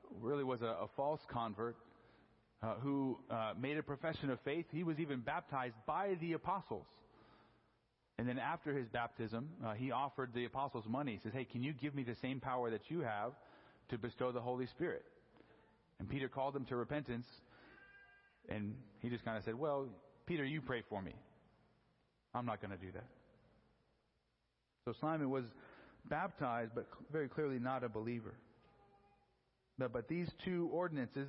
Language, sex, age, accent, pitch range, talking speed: English, male, 40-59, American, 120-150 Hz, 170 wpm